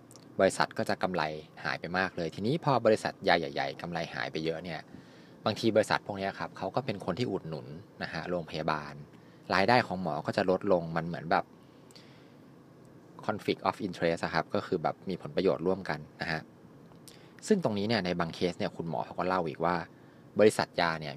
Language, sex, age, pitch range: Thai, male, 20-39, 80-110 Hz